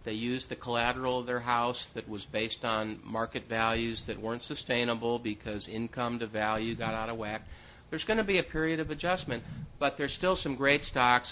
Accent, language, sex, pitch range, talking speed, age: American, English, male, 115-165 Hz, 200 wpm, 50-69